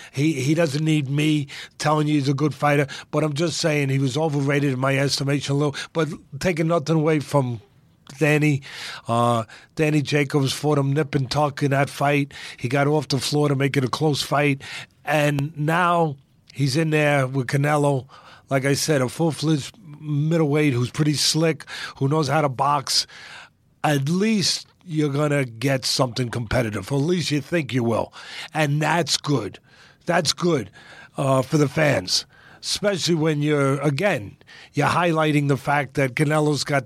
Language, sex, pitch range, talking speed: English, male, 140-160 Hz, 175 wpm